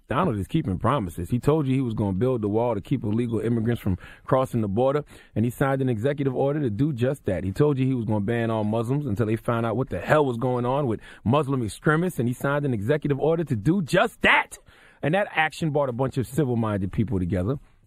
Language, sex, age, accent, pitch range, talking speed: English, male, 30-49, American, 100-130 Hz, 250 wpm